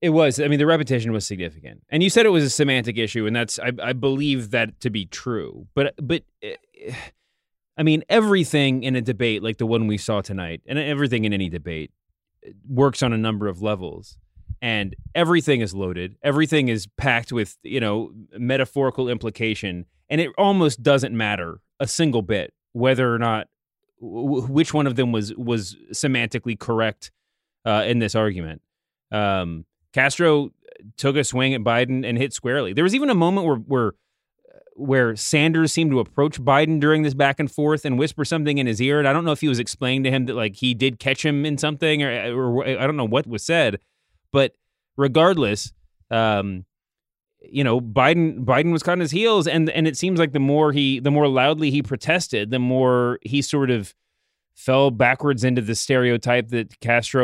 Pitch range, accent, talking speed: 115-150 Hz, American, 190 wpm